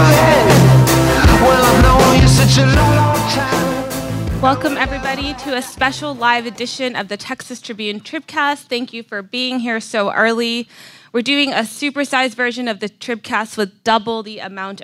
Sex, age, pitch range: female, 20-39, 190-240 Hz